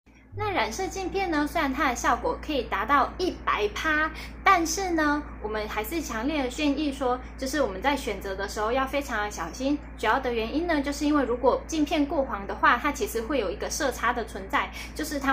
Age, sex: 10-29, female